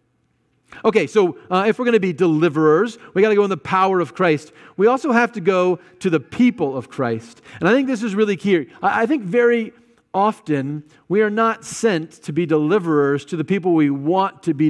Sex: male